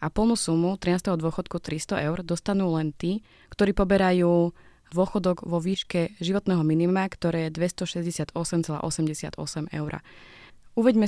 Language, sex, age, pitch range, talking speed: Slovak, female, 20-39, 165-185 Hz, 120 wpm